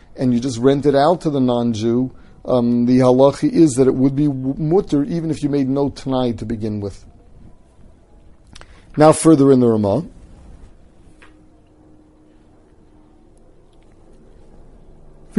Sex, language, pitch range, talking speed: male, English, 125-165 Hz, 130 wpm